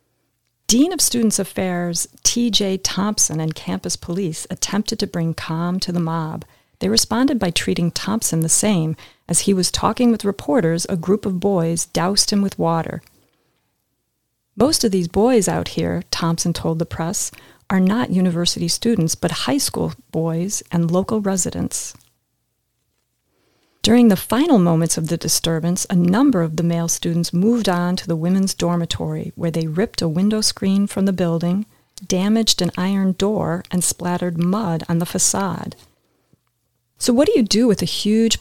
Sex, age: female, 40-59